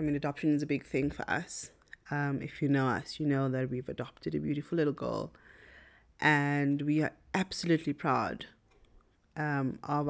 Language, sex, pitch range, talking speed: English, female, 140-165 Hz, 180 wpm